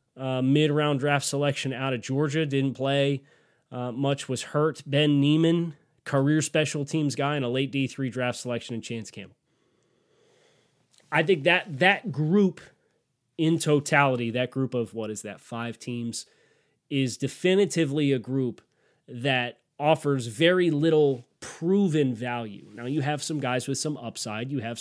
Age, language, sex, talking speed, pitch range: 20-39, English, male, 150 wpm, 125-155 Hz